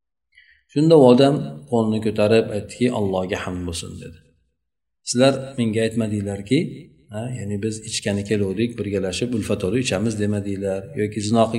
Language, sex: Russian, male